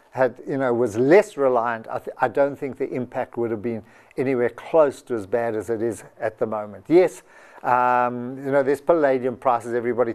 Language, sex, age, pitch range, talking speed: English, male, 50-69, 120-165 Hz, 200 wpm